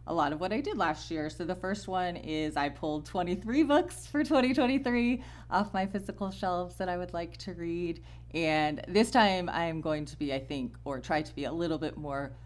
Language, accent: English, American